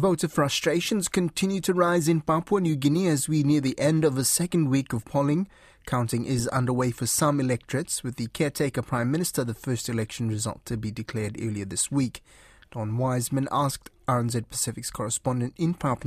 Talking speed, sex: 185 wpm, male